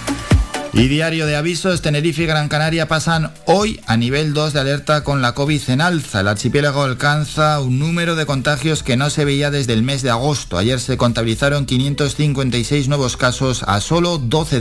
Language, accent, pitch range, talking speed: Spanish, Spanish, 120-160 Hz, 185 wpm